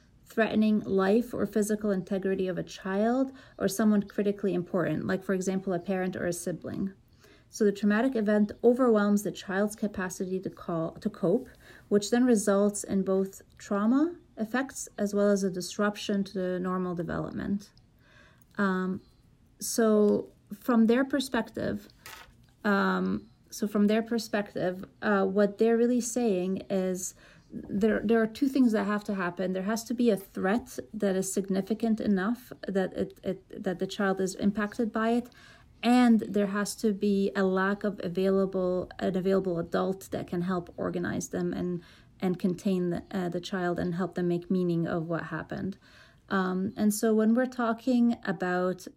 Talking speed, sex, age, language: 160 wpm, female, 30-49, English